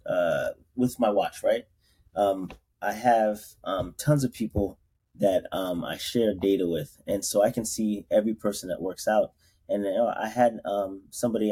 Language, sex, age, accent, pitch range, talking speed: English, male, 30-49, American, 95-120 Hz, 180 wpm